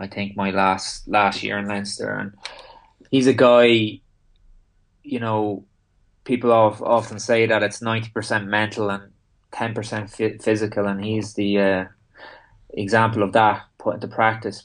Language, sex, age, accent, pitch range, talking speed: English, male, 20-39, Irish, 100-110 Hz, 150 wpm